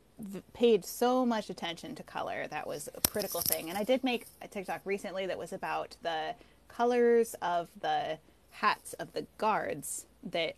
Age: 20-39